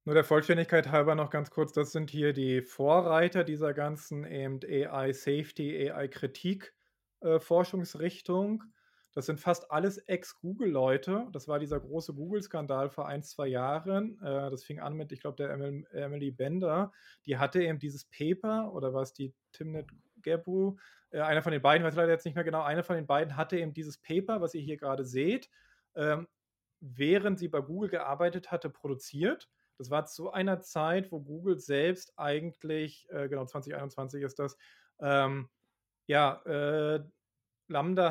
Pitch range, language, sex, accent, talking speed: 140-175 Hz, German, male, German, 160 wpm